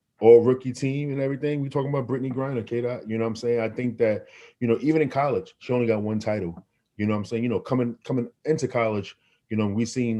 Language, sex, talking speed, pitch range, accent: English, male, 255 wpm, 100-125 Hz, American